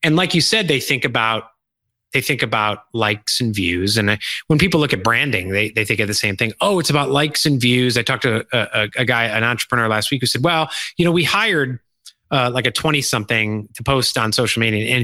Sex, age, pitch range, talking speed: male, 30-49, 110-150 Hz, 240 wpm